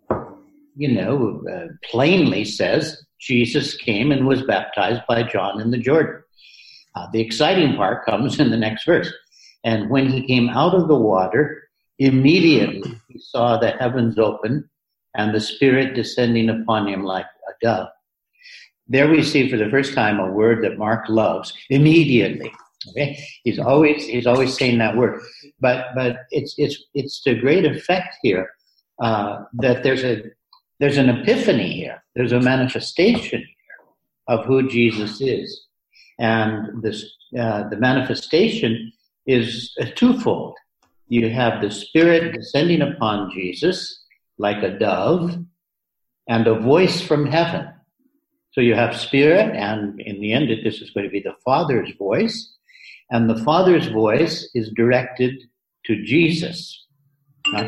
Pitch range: 115-150 Hz